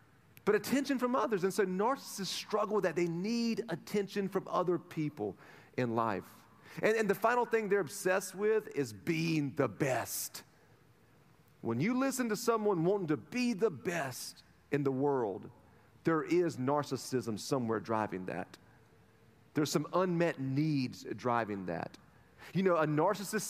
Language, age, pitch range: English, 40-59, 145-215 Hz